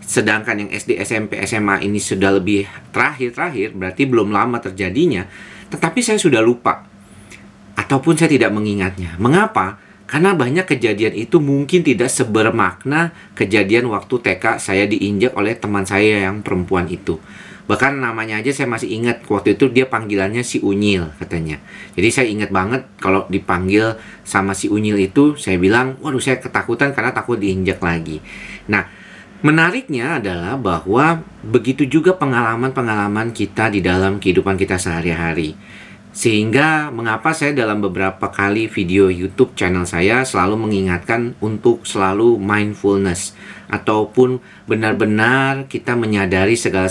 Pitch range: 95-125 Hz